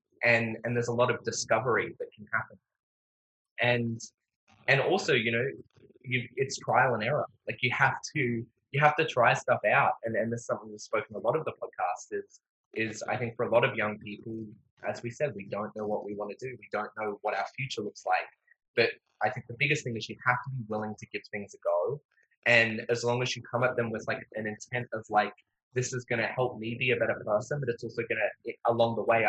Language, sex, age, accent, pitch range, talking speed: English, male, 20-39, Australian, 110-135 Hz, 245 wpm